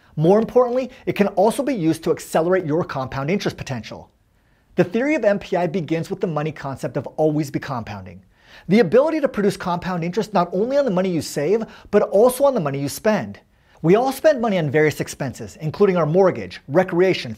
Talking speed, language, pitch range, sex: 195 wpm, English, 140-200 Hz, male